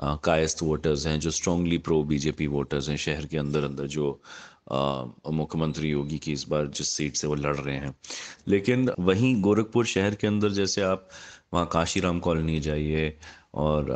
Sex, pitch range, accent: male, 80-110 Hz, native